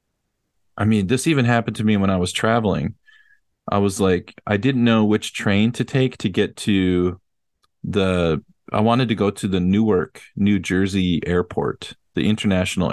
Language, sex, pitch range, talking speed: English, male, 95-115 Hz, 170 wpm